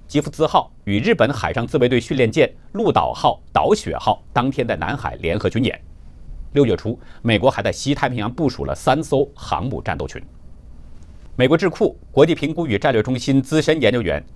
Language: Chinese